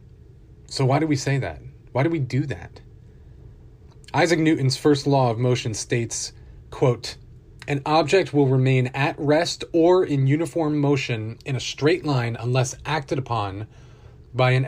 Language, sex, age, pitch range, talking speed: English, male, 30-49, 115-140 Hz, 155 wpm